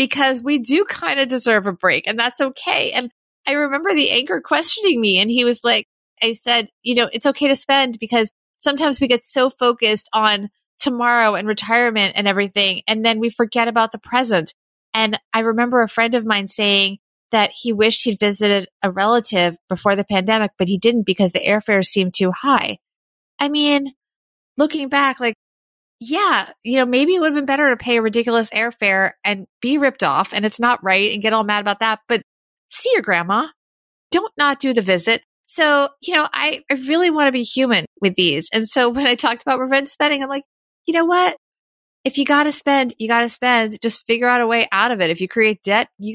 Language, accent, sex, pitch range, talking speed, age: English, American, female, 210-275 Hz, 215 wpm, 30-49